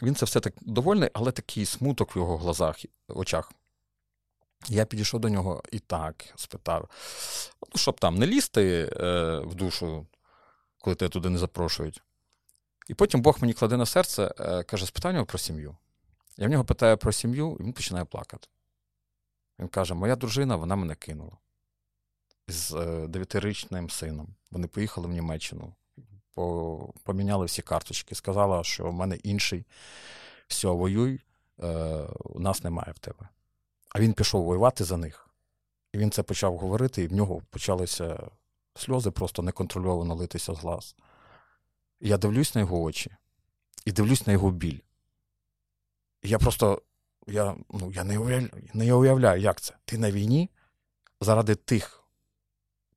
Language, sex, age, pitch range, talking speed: Ukrainian, male, 40-59, 90-110 Hz, 150 wpm